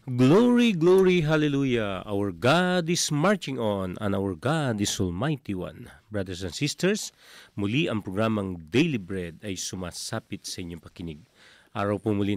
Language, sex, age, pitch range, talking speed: Filipino, male, 40-59, 90-120 Hz, 140 wpm